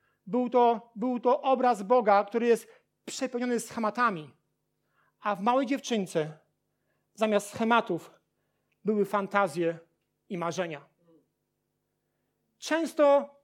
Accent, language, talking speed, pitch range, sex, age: native, Polish, 90 wpm, 210-260 Hz, male, 40-59